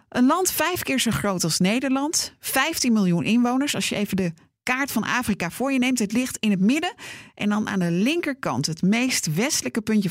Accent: Dutch